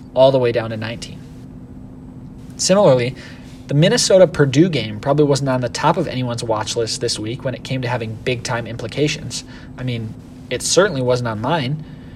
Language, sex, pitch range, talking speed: English, male, 125-150 Hz, 175 wpm